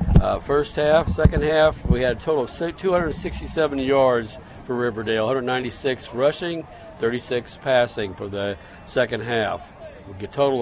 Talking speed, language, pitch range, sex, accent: 145 wpm, English, 115-145 Hz, male, American